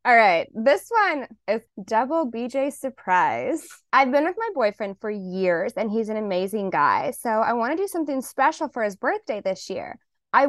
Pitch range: 220-330 Hz